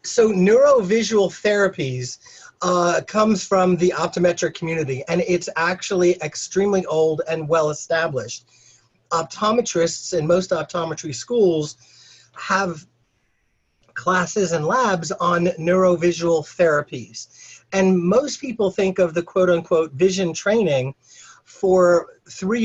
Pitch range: 155-190 Hz